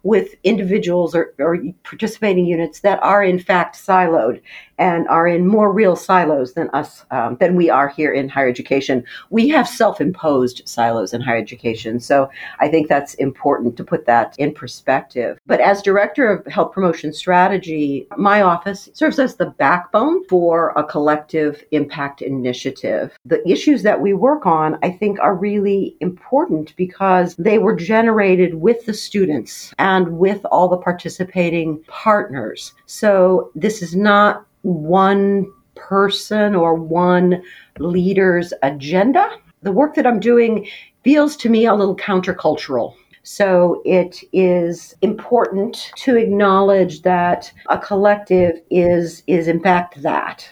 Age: 50-69